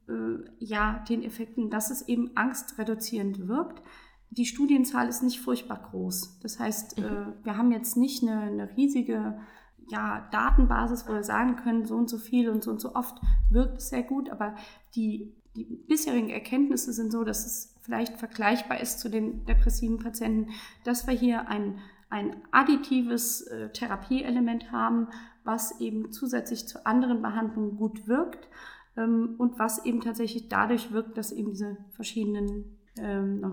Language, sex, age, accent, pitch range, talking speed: German, female, 30-49, German, 215-255 Hz, 150 wpm